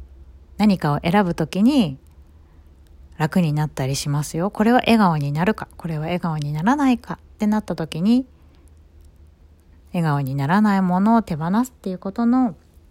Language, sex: Japanese, female